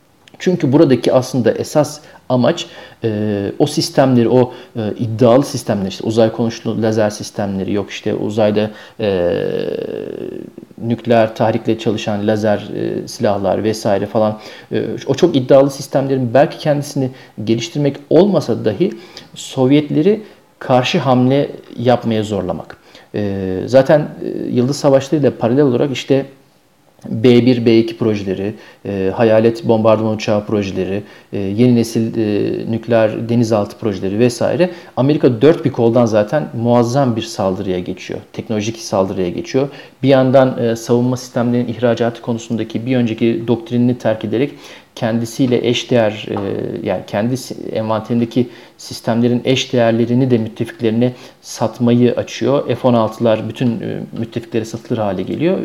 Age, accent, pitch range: 50-69, native, 110-130 Hz